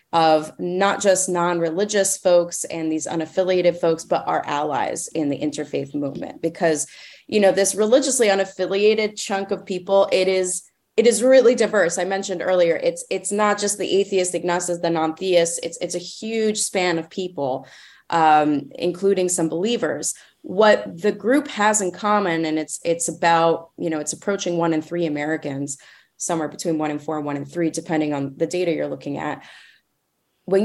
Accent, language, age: American, English, 20-39